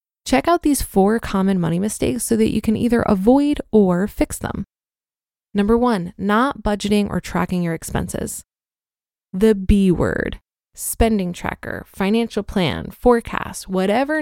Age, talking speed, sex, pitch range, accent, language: 20-39, 140 wpm, female, 190-245 Hz, American, English